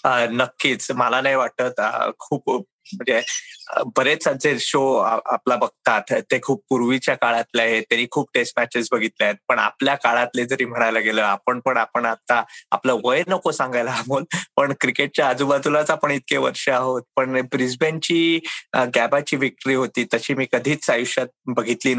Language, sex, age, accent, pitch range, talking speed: Marathi, male, 20-39, native, 125-155 Hz, 145 wpm